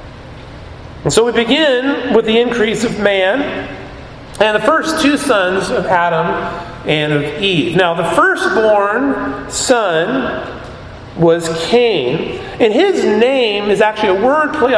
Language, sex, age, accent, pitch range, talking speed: English, male, 40-59, American, 185-250 Hz, 125 wpm